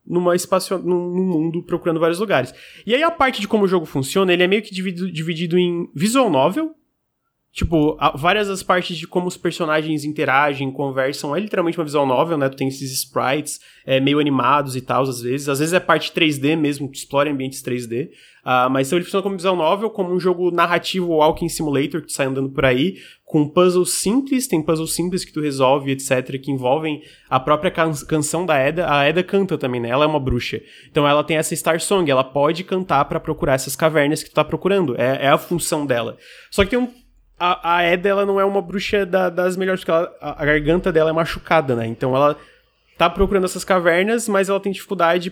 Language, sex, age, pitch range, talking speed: Portuguese, male, 20-39, 145-190 Hz, 215 wpm